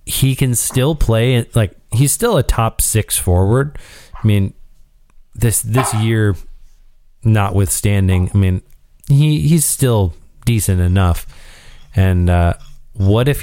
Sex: male